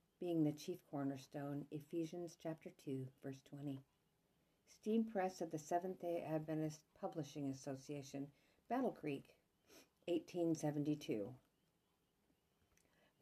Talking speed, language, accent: 90 wpm, English, American